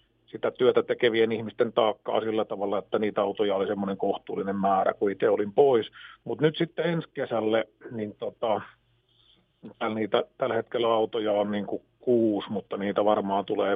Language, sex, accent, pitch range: Finnish, male, native, 110-125 Hz